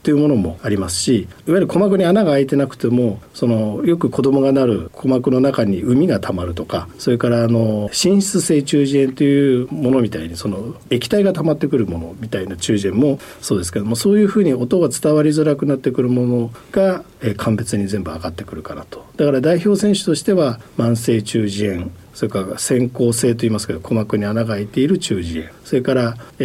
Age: 50-69